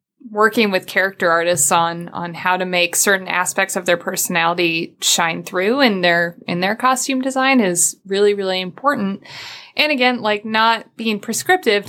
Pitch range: 190-230 Hz